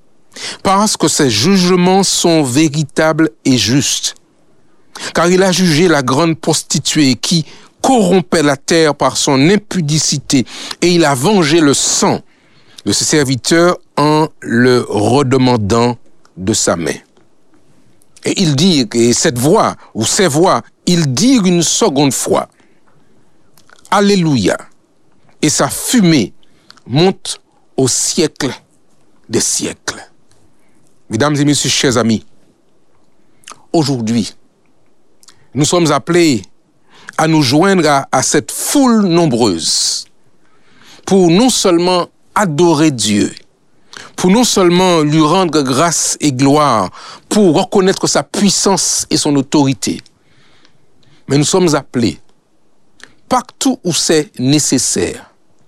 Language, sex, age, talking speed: French, male, 60-79, 115 wpm